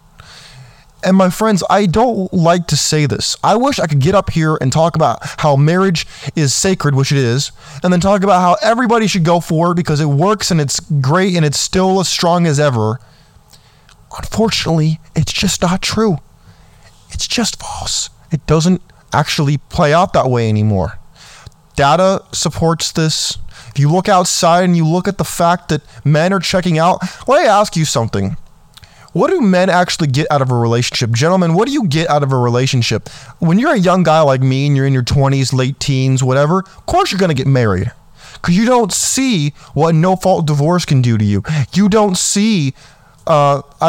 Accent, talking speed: American, 195 wpm